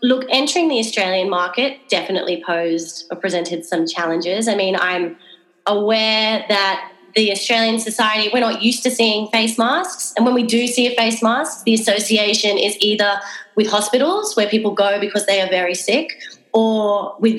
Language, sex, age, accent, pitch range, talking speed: English, female, 20-39, Australian, 190-225 Hz, 175 wpm